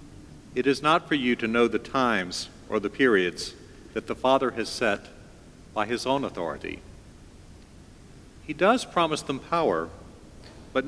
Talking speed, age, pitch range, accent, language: 150 wpm, 50-69, 105-145 Hz, American, English